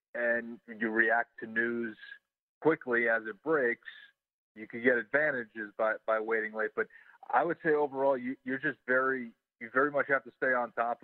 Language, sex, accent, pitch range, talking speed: English, male, American, 110-135 Hz, 185 wpm